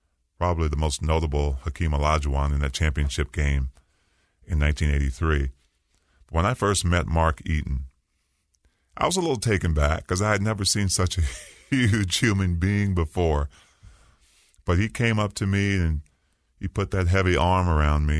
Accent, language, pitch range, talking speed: American, English, 75-90 Hz, 160 wpm